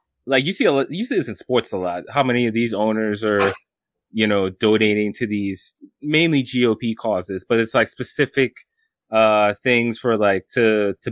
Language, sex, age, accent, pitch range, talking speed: English, male, 20-39, American, 105-130 Hz, 195 wpm